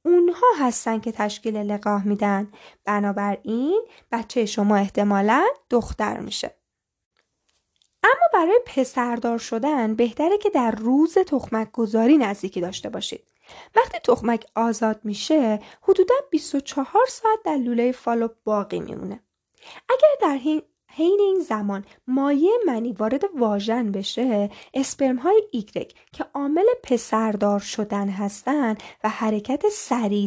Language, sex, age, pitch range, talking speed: Persian, female, 10-29, 205-320 Hz, 120 wpm